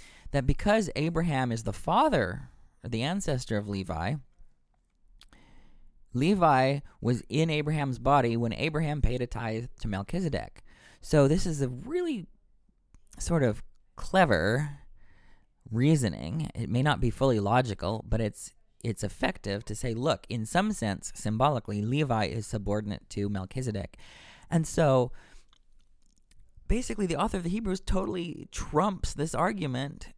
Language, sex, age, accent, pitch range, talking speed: English, male, 20-39, American, 105-150 Hz, 130 wpm